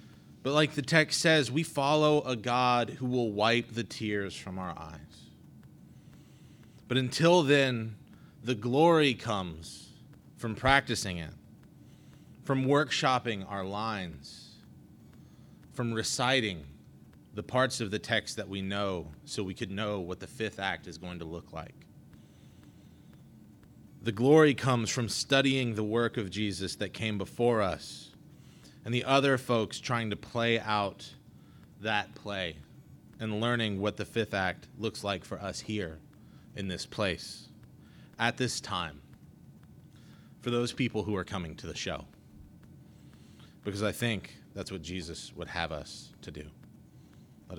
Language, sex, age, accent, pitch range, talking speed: English, male, 30-49, American, 95-125 Hz, 145 wpm